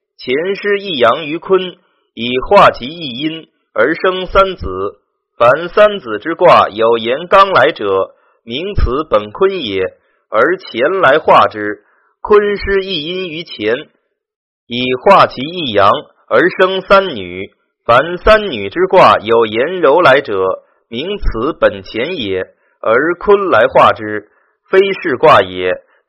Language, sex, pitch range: Chinese, male, 130-205 Hz